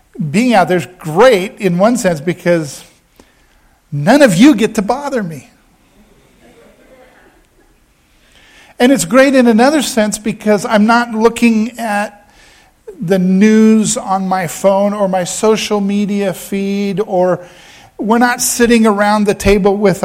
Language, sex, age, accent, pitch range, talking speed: English, male, 50-69, American, 170-215 Hz, 135 wpm